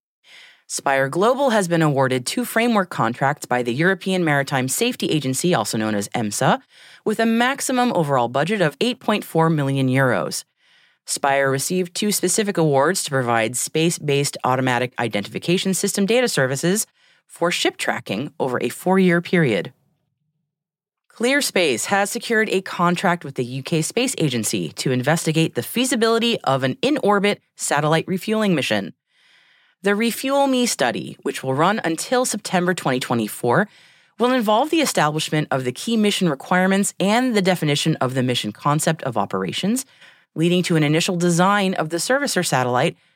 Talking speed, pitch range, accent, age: 145 wpm, 135-210 Hz, American, 30-49